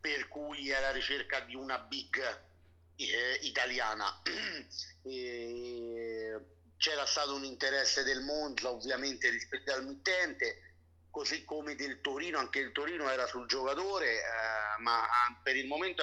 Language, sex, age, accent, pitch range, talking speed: Italian, male, 50-69, native, 120-155 Hz, 130 wpm